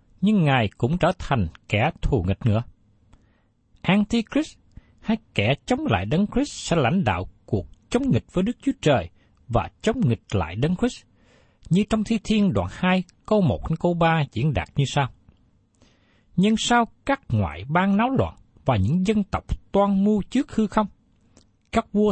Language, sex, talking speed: Vietnamese, male, 175 wpm